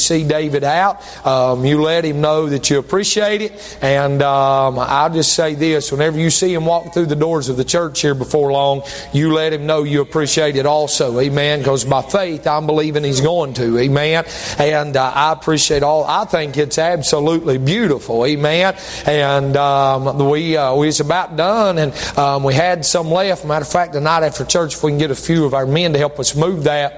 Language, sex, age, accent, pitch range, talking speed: English, male, 30-49, American, 145-175 Hz, 210 wpm